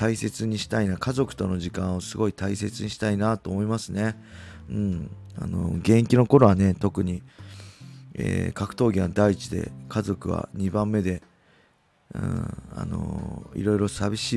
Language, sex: Japanese, male